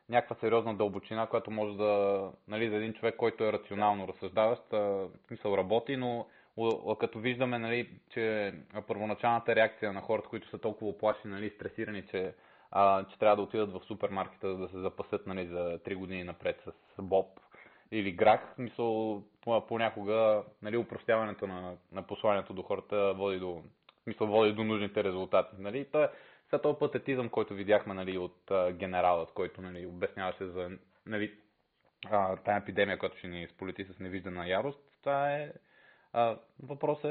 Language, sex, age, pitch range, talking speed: Bulgarian, male, 20-39, 95-115 Hz, 155 wpm